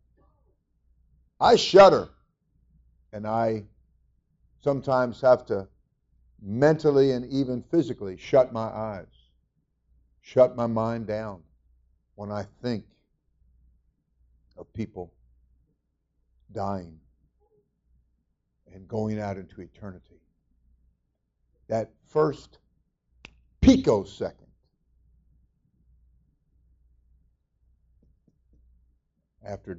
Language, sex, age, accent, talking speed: English, male, 60-79, American, 65 wpm